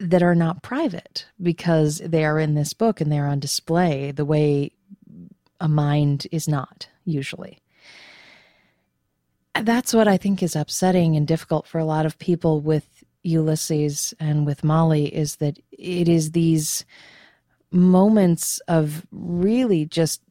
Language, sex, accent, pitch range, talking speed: English, female, American, 150-185 Hz, 140 wpm